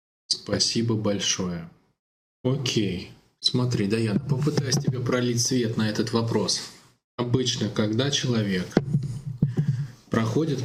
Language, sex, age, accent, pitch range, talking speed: Russian, male, 20-39, native, 110-155 Hz, 95 wpm